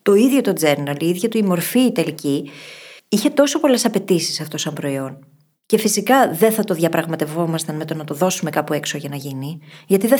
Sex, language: female, Greek